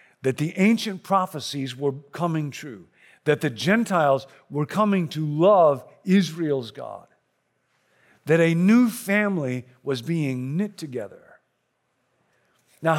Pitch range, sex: 165-215 Hz, male